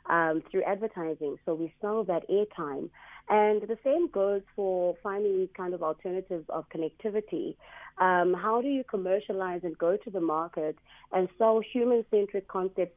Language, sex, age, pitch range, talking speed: English, female, 30-49, 165-195 Hz, 155 wpm